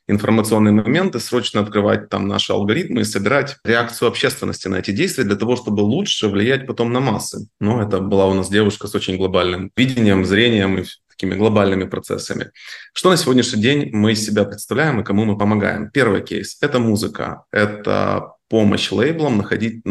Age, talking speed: 20-39, 175 wpm